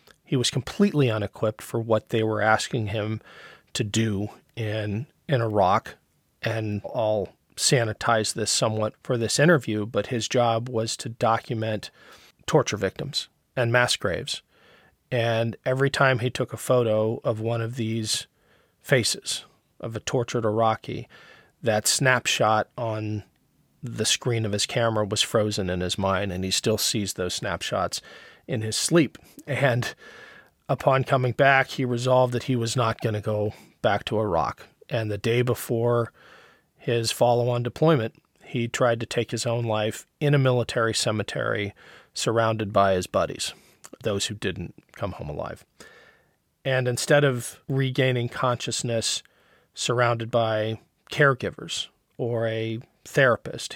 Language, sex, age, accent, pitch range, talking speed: English, male, 40-59, American, 110-125 Hz, 140 wpm